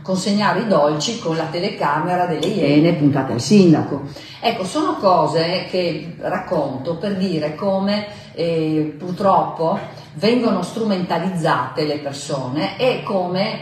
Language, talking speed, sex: Italian, 120 wpm, female